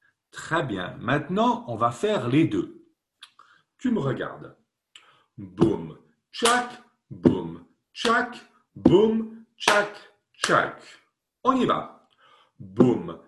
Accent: French